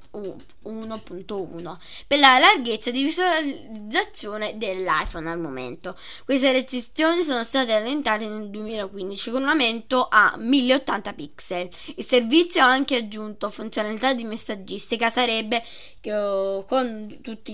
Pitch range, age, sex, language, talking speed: 210-270 Hz, 20-39, female, Italian, 115 wpm